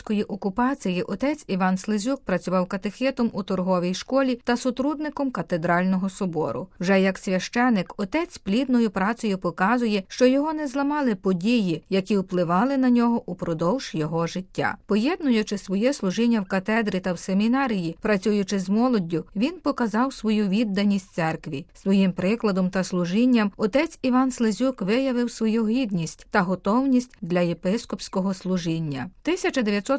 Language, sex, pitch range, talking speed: Ukrainian, female, 190-245 Hz, 130 wpm